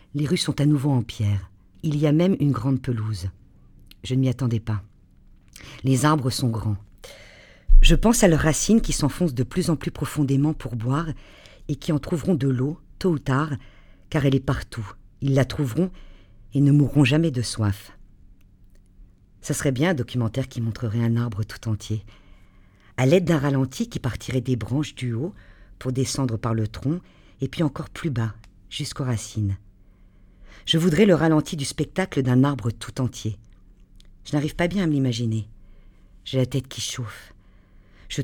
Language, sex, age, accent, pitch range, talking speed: French, female, 50-69, French, 100-145 Hz, 180 wpm